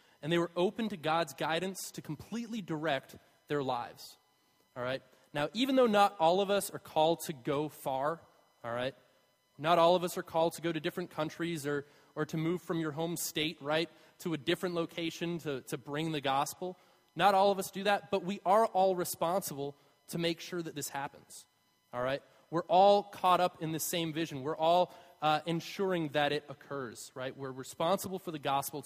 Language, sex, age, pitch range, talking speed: English, male, 20-39, 150-185 Hz, 200 wpm